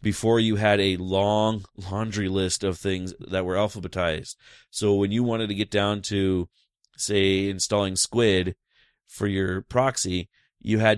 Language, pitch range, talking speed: English, 95-115 Hz, 155 wpm